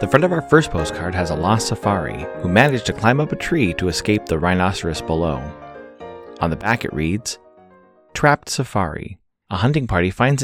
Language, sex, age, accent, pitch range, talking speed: English, male, 30-49, American, 90-115 Hz, 190 wpm